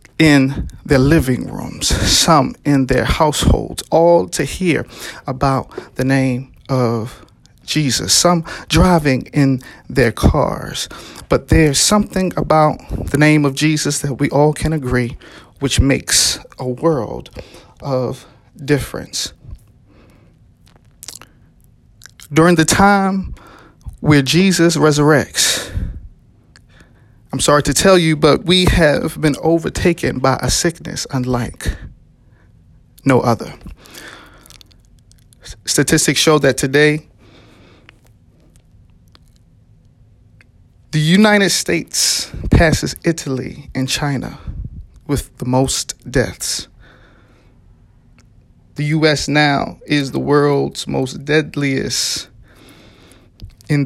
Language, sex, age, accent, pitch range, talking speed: English, male, 50-69, American, 120-155 Hz, 95 wpm